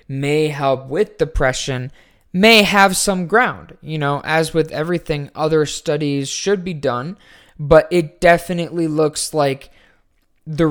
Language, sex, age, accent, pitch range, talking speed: English, male, 20-39, American, 130-160 Hz, 135 wpm